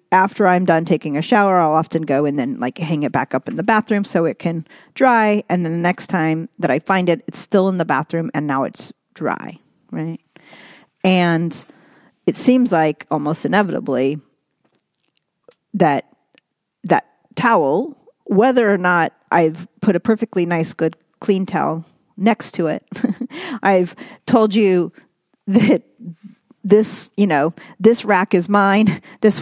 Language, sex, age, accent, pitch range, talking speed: English, female, 40-59, American, 165-210 Hz, 155 wpm